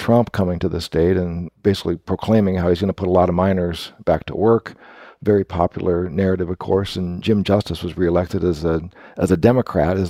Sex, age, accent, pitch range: male, 50-69, American, 85-105 Hz